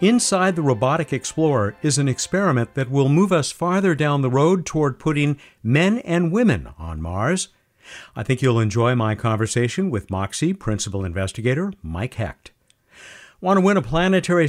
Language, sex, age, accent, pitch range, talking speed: English, male, 50-69, American, 110-170 Hz, 160 wpm